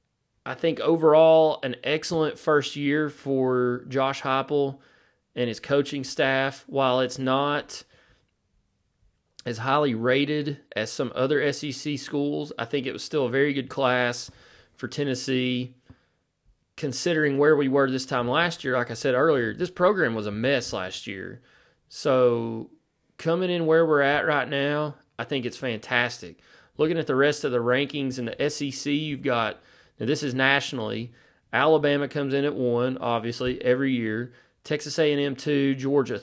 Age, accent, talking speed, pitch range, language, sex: 30-49, American, 155 wpm, 125-150 Hz, English, male